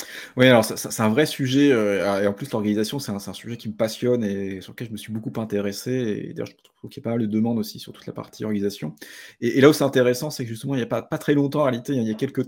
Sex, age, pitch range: male, 30-49, 100-125 Hz